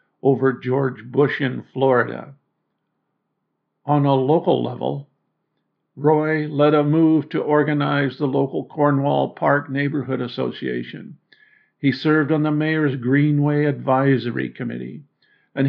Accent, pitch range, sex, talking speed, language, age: American, 130-150 Hz, male, 115 wpm, English, 50-69